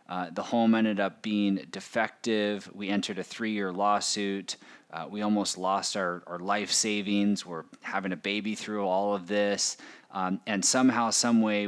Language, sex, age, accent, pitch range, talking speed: English, male, 30-49, American, 95-115 Hz, 165 wpm